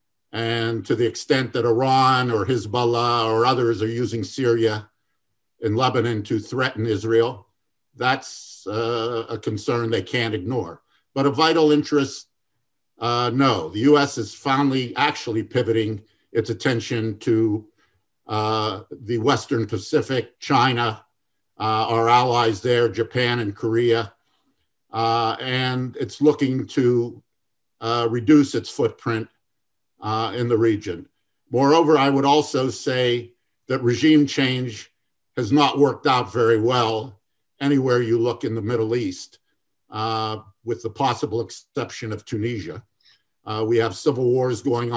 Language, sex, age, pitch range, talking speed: Arabic, male, 50-69, 110-130 Hz, 130 wpm